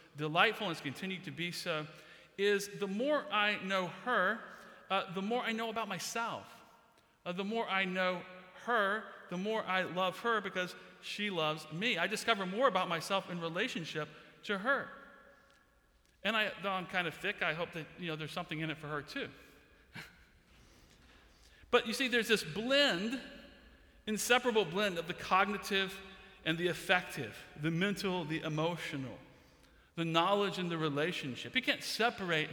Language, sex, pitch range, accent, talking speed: English, male, 165-220 Hz, American, 165 wpm